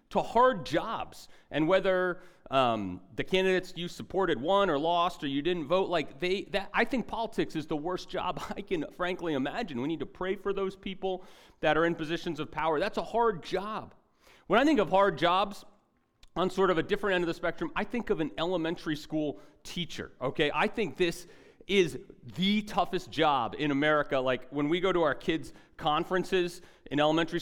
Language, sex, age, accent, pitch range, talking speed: English, male, 40-59, American, 150-195 Hz, 195 wpm